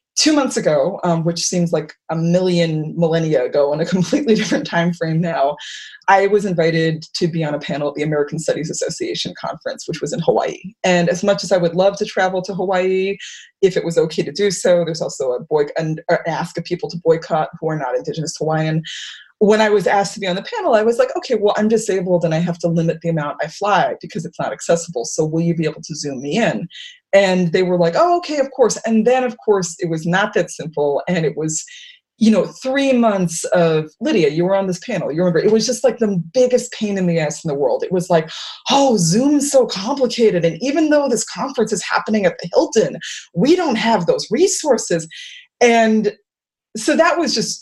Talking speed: 225 wpm